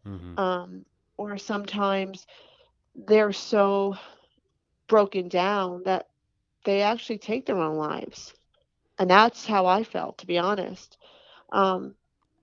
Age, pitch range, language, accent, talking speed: 40-59, 195-225 Hz, English, American, 110 wpm